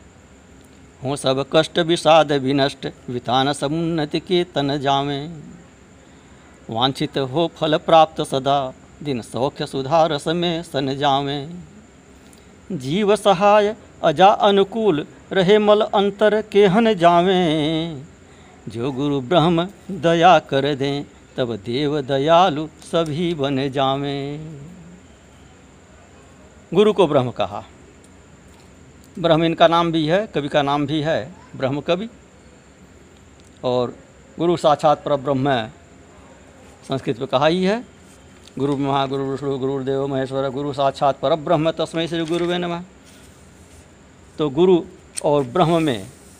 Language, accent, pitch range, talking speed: Hindi, native, 115-165 Hz, 115 wpm